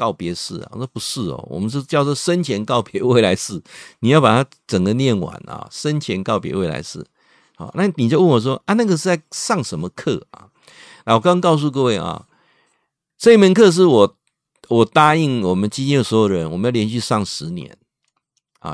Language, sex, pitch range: Chinese, male, 105-150 Hz